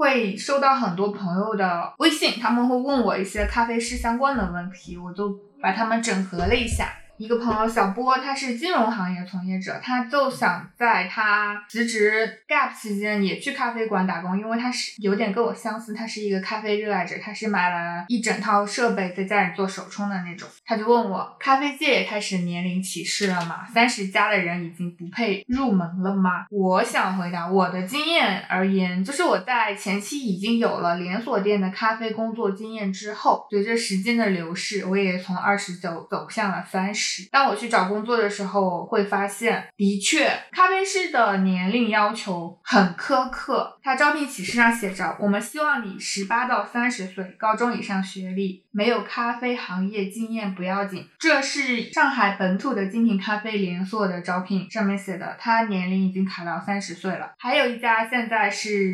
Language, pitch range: Chinese, 190-235 Hz